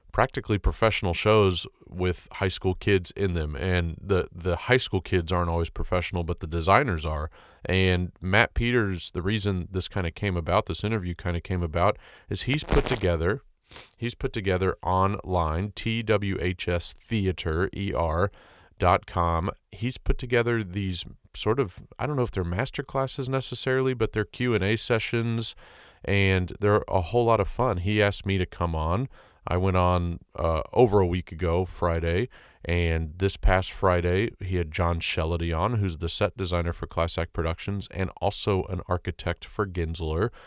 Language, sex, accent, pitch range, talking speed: English, male, American, 85-110 Hz, 165 wpm